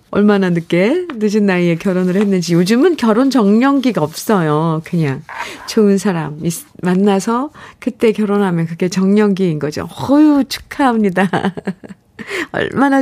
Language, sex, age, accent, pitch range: Korean, female, 40-59, native, 170-230 Hz